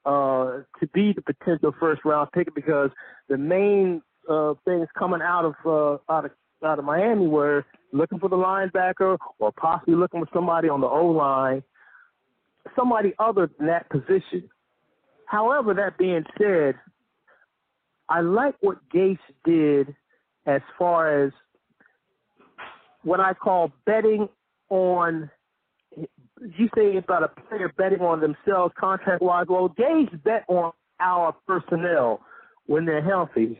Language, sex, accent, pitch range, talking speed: English, male, American, 155-190 Hz, 135 wpm